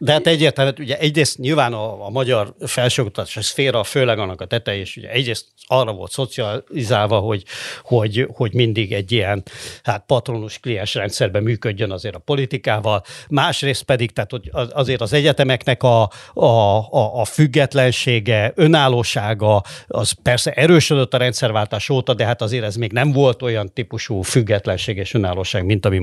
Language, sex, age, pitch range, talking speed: Hungarian, male, 60-79, 110-135 Hz, 150 wpm